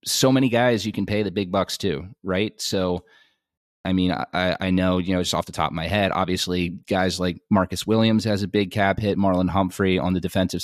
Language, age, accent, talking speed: English, 30-49, American, 230 wpm